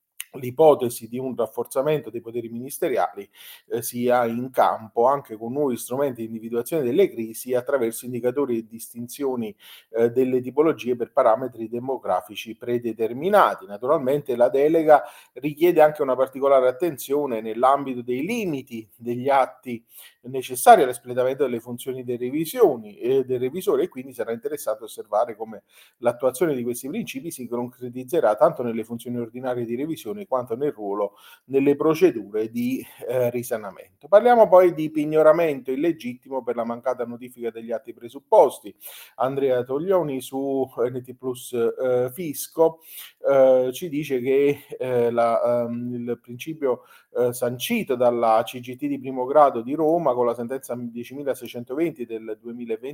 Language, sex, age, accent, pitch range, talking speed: Italian, male, 40-59, native, 120-145 Hz, 135 wpm